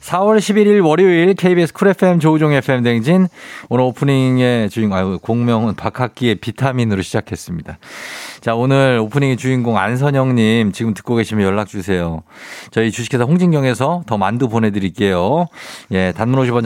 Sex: male